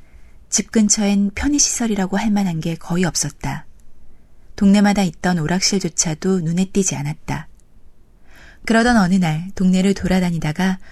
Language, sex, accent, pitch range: Korean, female, native, 165-205 Hz